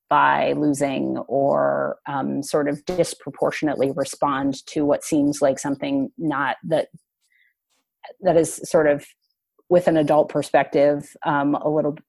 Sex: female